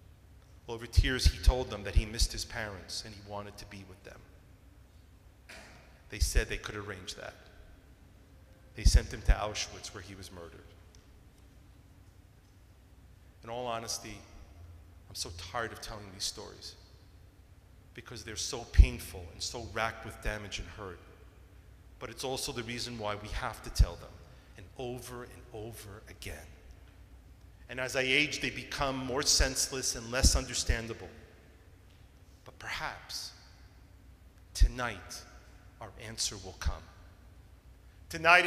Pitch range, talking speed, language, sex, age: 90-150 Hz, 135 wpm, English, male, 40-59